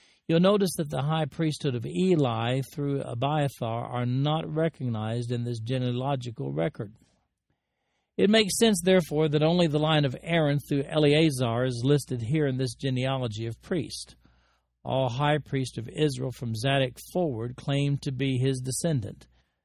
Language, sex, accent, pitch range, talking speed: English, male, American, 115-150 Hz, 155 wpm